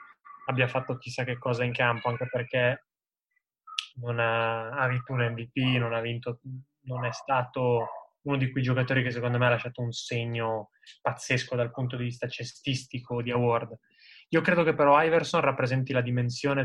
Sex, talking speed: male, 165 wpm